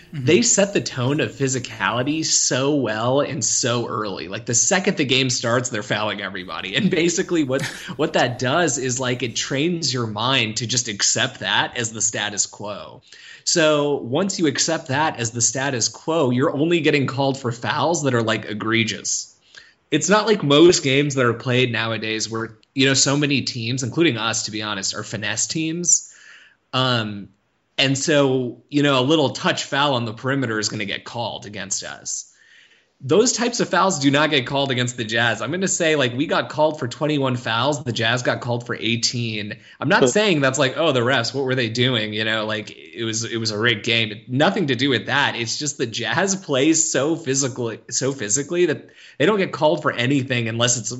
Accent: American